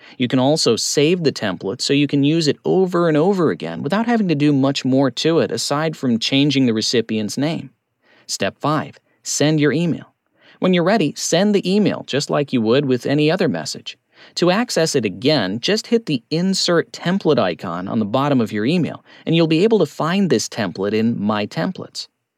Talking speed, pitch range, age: 200 wpm, 125-185 Hz, 40-59